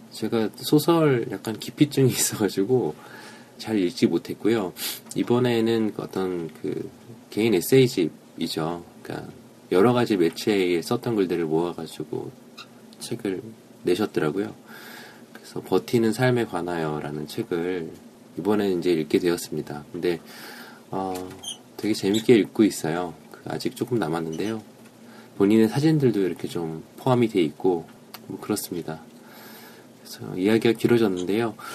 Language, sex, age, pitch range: Korean, male, 20-39, 90-120 Hz